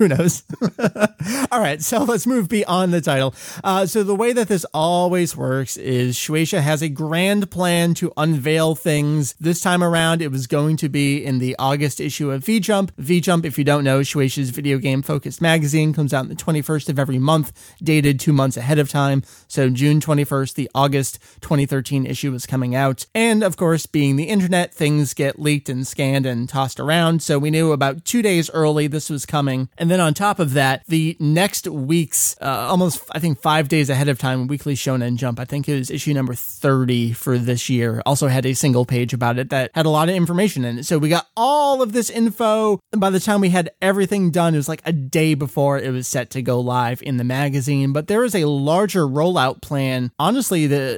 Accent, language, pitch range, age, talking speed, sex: American, English, 135-175 Hz, 30-49, 220 wpm, male